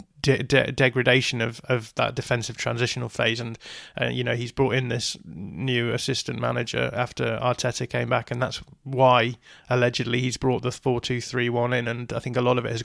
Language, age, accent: English, 20-39, British